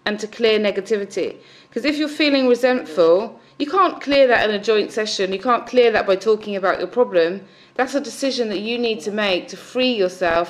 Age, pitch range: 30-49, 190-230 Hz